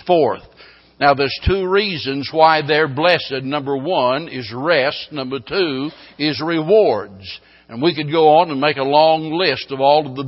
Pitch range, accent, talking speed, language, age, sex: 140-170 Hz, American, 175 wpm, English, 60-79, male